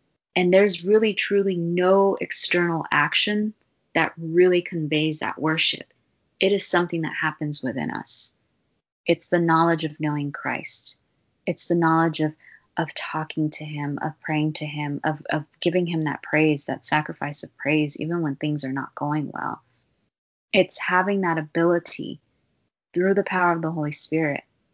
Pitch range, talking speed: 150-175 Hz, 160 wpm